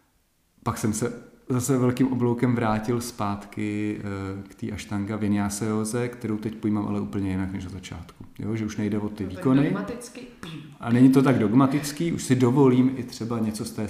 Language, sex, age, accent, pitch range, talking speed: Czech, male, 40-59, native, 100-125 Hz, 175 wpm